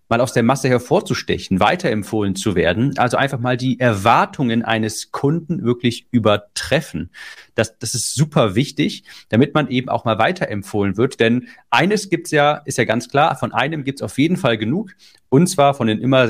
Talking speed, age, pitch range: 190 wpm, 40-59, 110-140 Hz